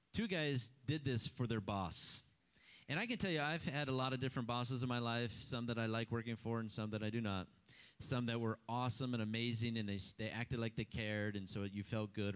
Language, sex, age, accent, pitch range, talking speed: English, male, 30-49, American, 115-170 Hz, 250 wpm